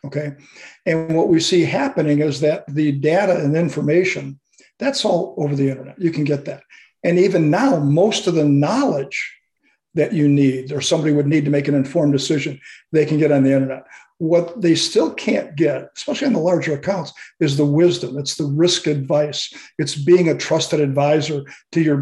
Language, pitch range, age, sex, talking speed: English, 145-170 Hz, 50-69, male, 190 wpm